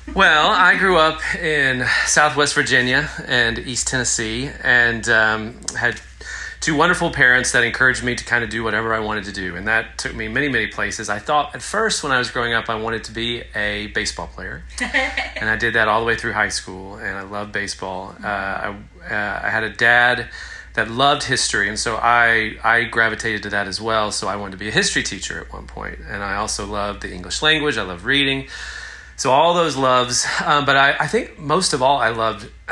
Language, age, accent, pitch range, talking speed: English, 30-49, American, 105-130 Hz, 220 wpm